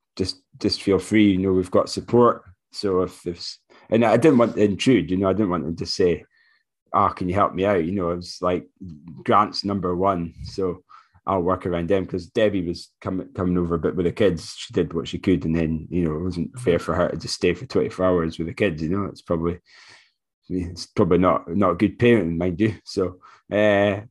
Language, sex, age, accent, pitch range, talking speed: English, male, 20-39, British, 85-95 Hz, 235 wpm